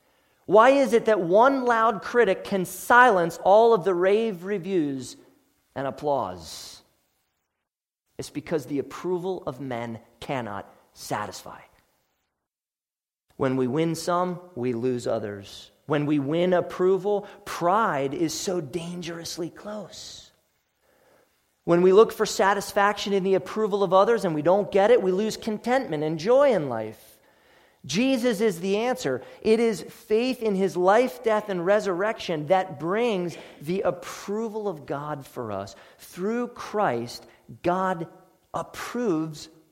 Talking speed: 130 wpm